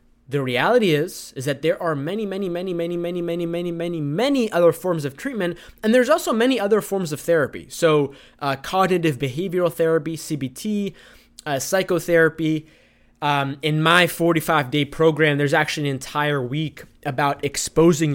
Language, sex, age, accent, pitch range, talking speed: English, male, 20-39, American, 140-170 Hz, 160 wpm